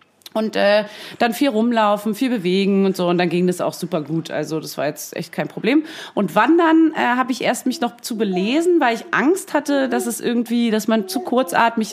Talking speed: 220 wpm